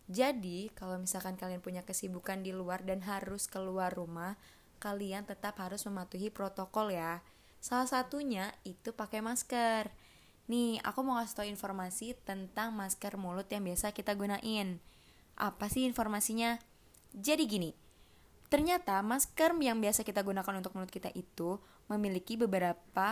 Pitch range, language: 190-235 Hz, Indonesian